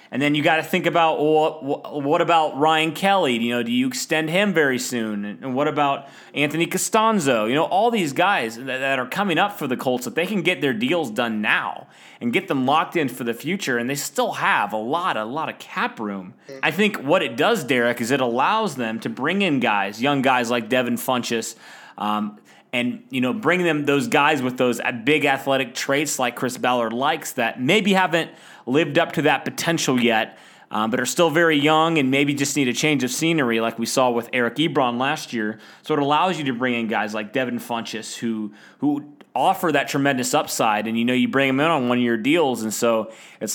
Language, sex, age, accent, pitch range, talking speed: English, male, 30-49, American, 120-155 Hz, 225 wpm